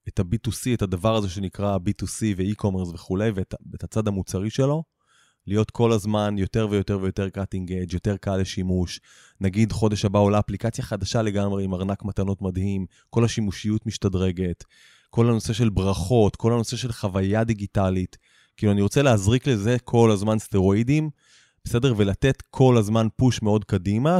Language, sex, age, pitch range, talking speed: English, male, 20-39, 100-120 Hz, 150 wpm